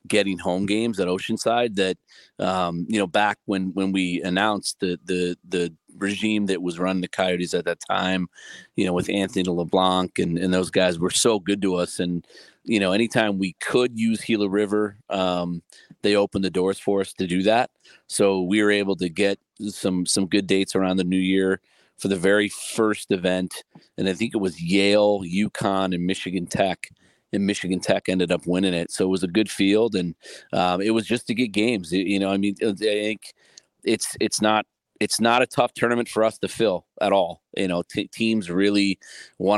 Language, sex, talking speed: English, male, 205 wpm